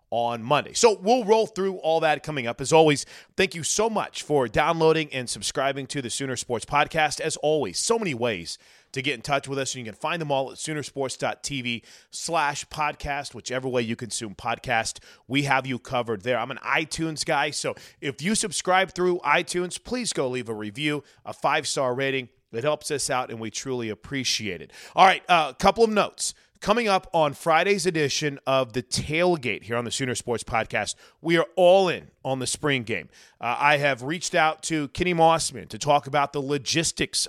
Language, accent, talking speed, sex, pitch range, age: English, American, 200 wpm, male, 125-165 Hz, 30-49